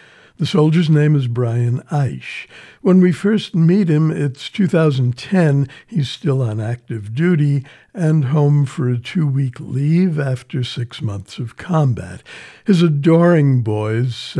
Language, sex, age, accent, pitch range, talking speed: English, male, 60-79, American, 125-160 Hz, 135 wpm